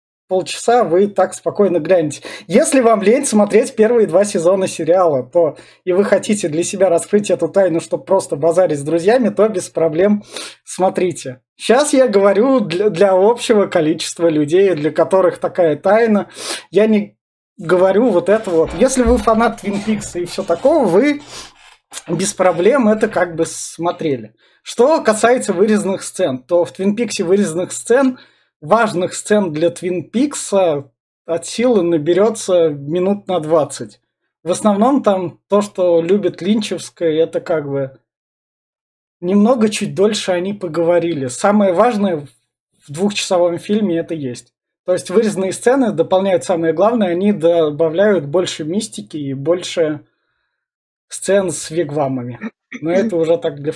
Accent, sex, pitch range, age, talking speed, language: native, male, 165-210 Hz, 20-39, 140 wpm, Russian